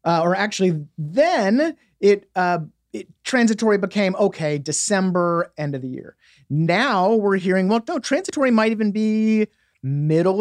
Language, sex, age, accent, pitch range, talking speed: English, male, 30-49, American, 140-195 Hz, 145 wpm